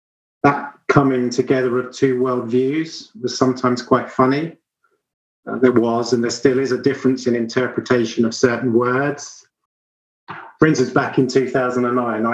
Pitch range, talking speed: 115-130 Hz, 140 wpm